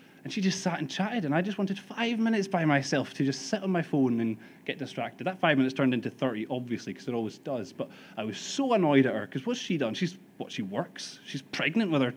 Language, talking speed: English, 260 wpm